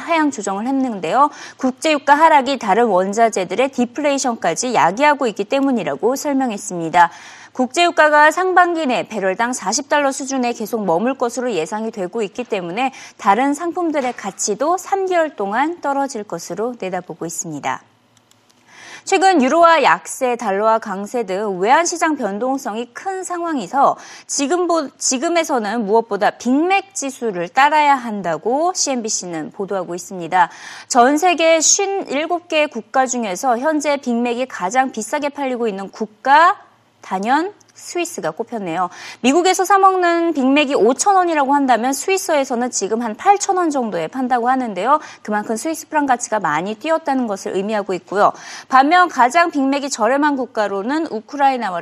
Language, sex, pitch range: Korean, female, 205-300 Hz